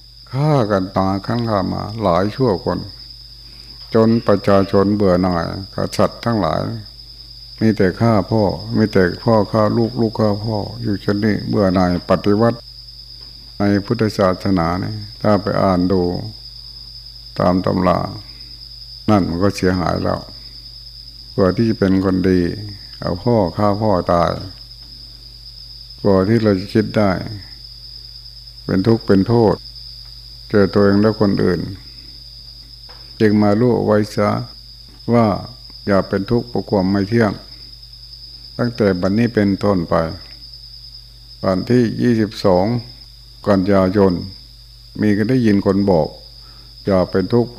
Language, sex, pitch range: Thai, male, 100-120 Hz